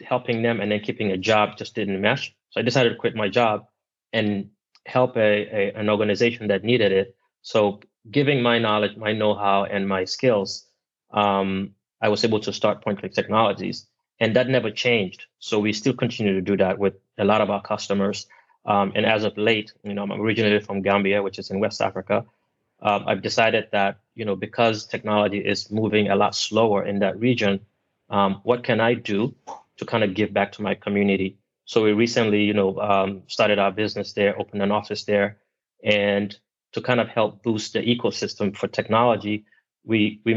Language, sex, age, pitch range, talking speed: English, male, 20-39, 100-110 Hz, 195 wpm